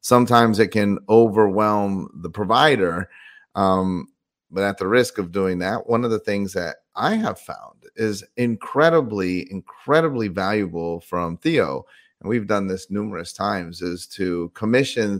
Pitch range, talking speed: 95-115 Hz, 145 wpm